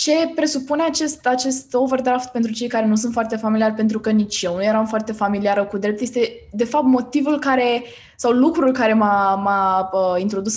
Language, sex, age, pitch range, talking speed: Romanian, female, 20-39, 200-255 Hz, 165 wpm